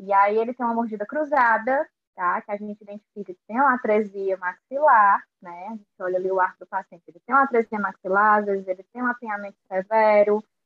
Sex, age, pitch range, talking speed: female, 10-29, 200-260 Hz, 215 wpm